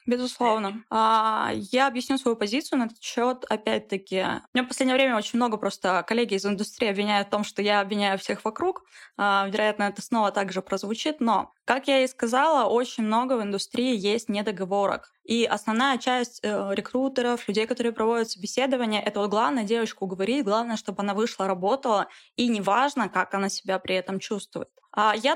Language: Russian